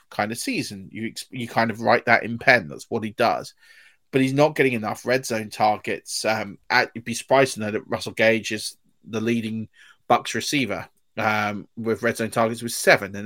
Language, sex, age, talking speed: English, male, 20-39, 210 wpm